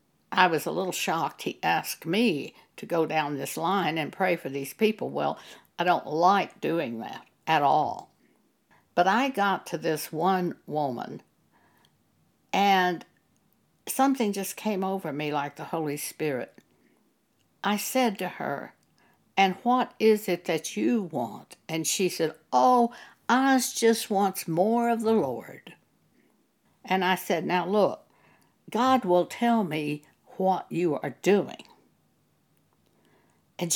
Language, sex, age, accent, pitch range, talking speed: English, female, 60-79, American, 175-255 Hz, 140 wpm